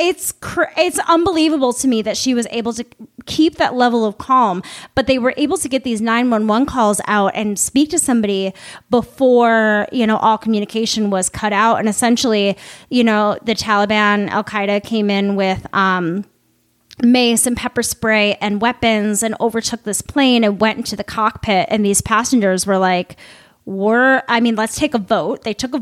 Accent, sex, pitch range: American, female, 205-245 Hz